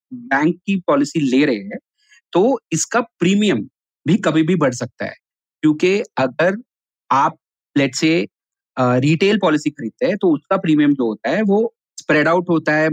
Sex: male